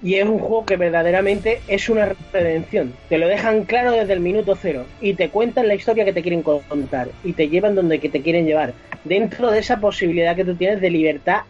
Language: Spanish